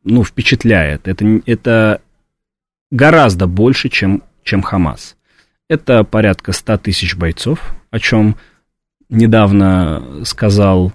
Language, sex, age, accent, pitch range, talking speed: Russian, male, 30-49, native, 95-125 Hz, 100 wpm